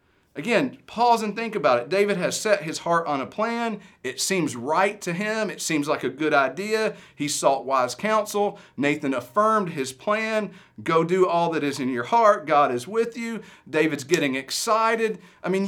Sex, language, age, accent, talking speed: male, English, 40-59, American, 190 wpm